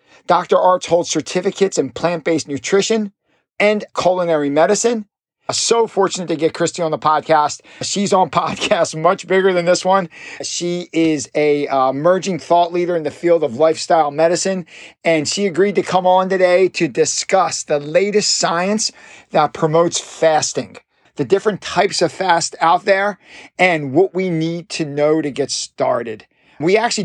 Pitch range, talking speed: 150-180 Hz, 160 wpm